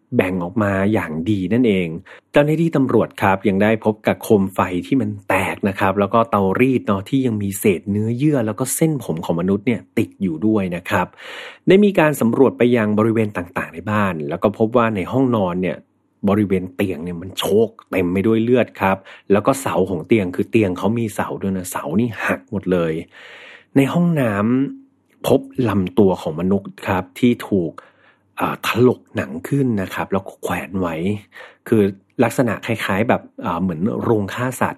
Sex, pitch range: male, 95-125 Hz